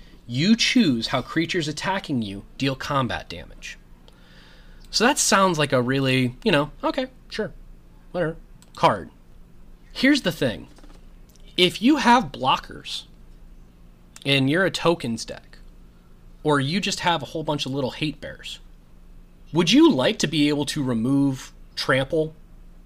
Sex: male